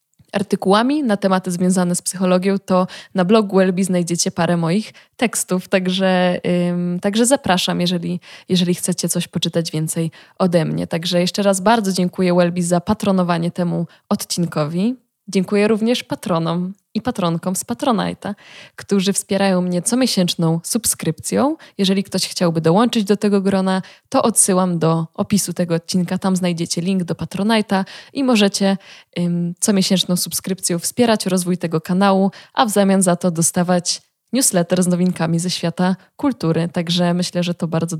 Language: Polish